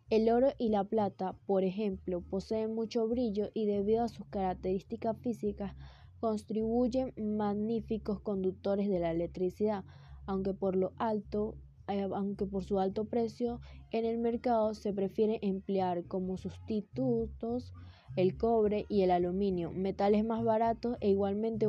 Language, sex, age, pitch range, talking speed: Spanish, female, 10-29, 185-220 Hz, 135 wpm